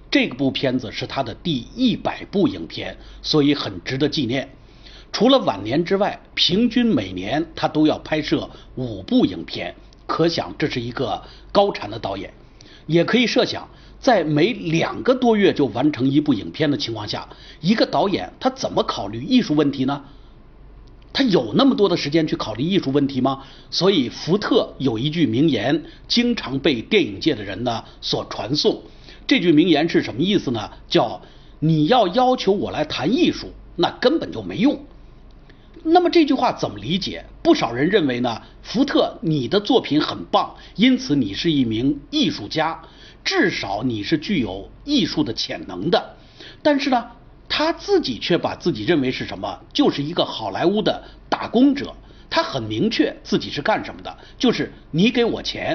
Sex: male